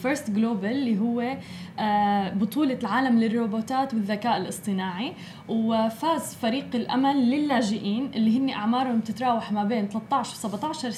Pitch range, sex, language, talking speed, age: 215-265 Hz, female, Arabic, 120 wpm, 20-39